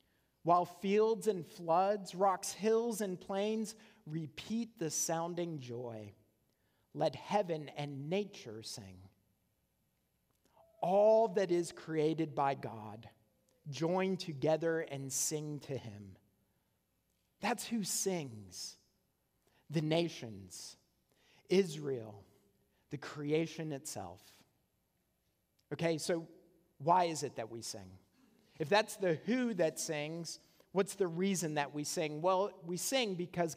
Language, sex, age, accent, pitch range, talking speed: English, male, 40-59, American, 140-195 Hz, 110 wpm